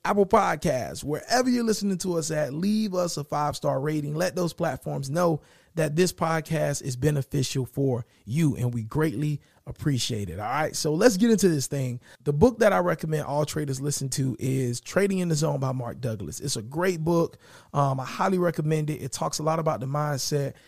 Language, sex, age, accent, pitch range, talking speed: English, male, 30-49, American, 135-175 Hz, 205 wpm